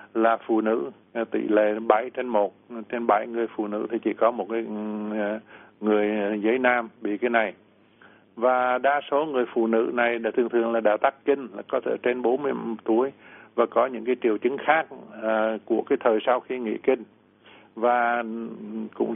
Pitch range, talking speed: 105-125 Hz, 190 wpm